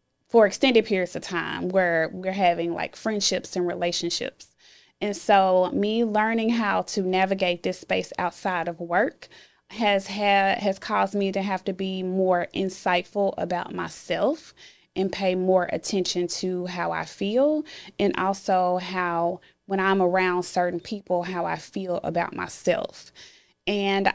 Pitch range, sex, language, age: 180-210 Hz, female, English, 20-39